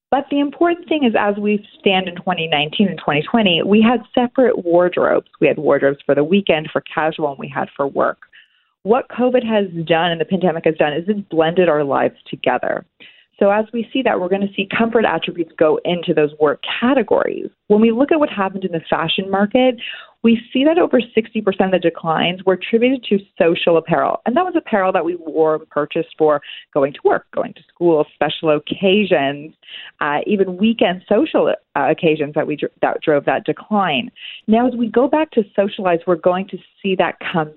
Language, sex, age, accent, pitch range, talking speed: English, female, 30-49, American, 160-225 Hz, 200 wpm